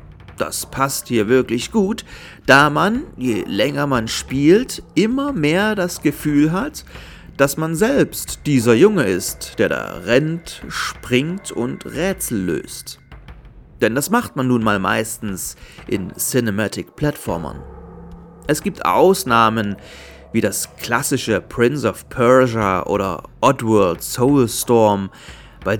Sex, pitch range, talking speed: male, 105-150 Hz, 120 wpm